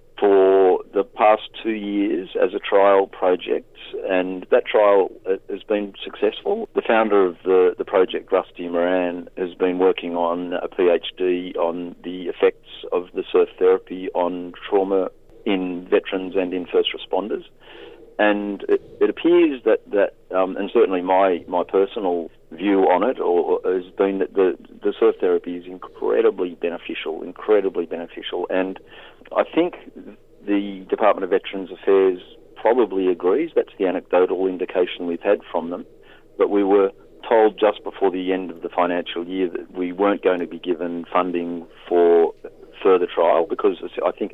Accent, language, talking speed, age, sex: Australian, English, 155 wpm, 50-69, male